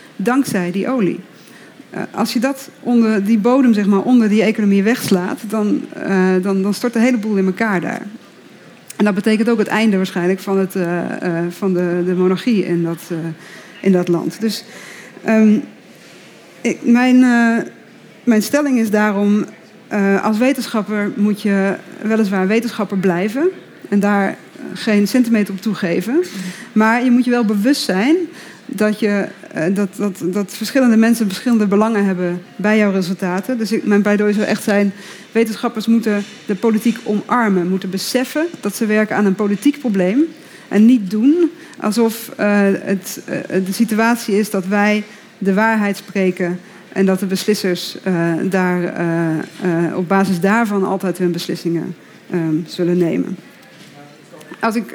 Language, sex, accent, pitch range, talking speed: Dutch, female, Dutch, 190-230 Hz, 155 wpm